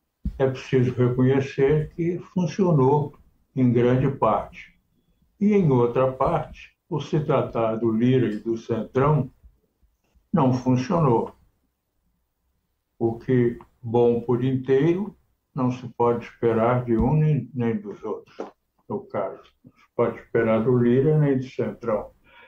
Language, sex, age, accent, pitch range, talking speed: Portuguese, male, 60-79, Brazilian, 115-140 Hz, 125 wpm